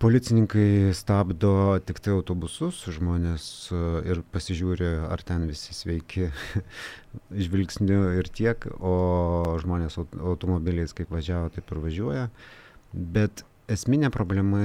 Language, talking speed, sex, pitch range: English, 105 wpm, male, 85-100 Hz